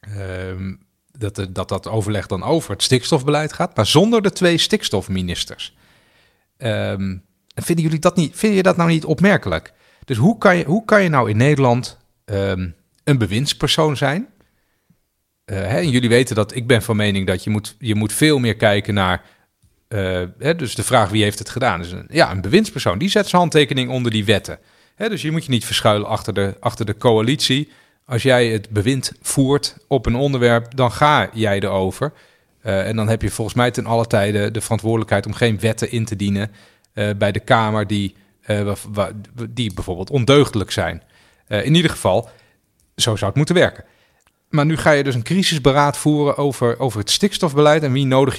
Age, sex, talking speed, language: 40-59, male, 195 wpm, Dutch